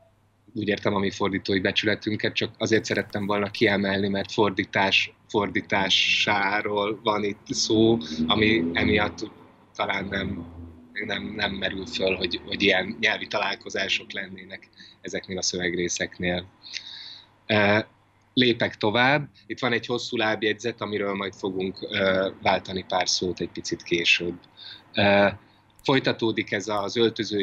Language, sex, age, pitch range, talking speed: Hungarian, male, 30-49, 95-110 Hz, 115 wpm